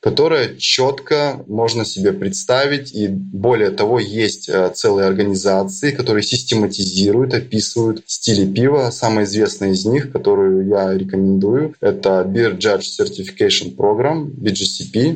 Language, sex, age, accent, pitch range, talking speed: Russian, male, 20-39, native, 105-140 Hz, 115 wpm